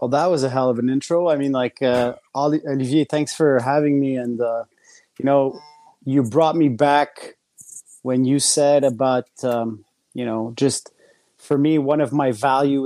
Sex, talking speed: male, 180 wpm